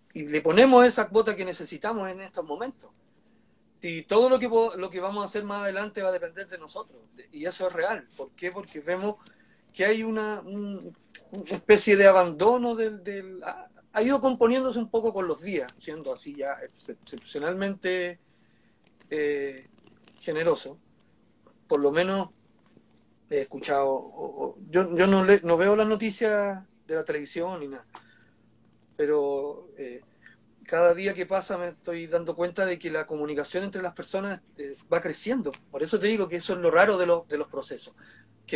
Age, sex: 40-59, male